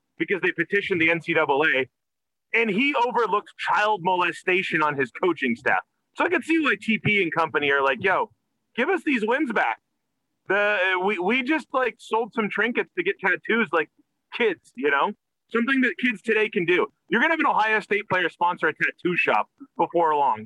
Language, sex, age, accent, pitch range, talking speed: English, male, 30-49, American, 175-275 Hz, 190 wpm